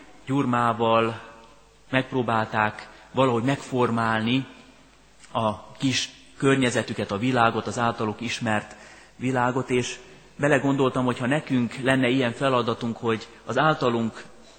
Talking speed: 100 wpm